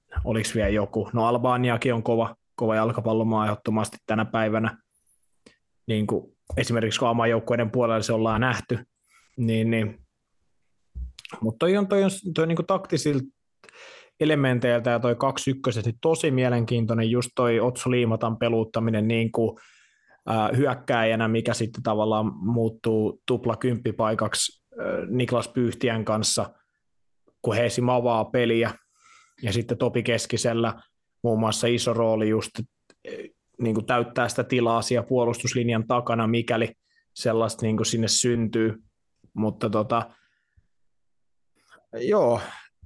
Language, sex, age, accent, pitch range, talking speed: Finnish, male, 20-39, native, 110-130 Hz, 105 wpm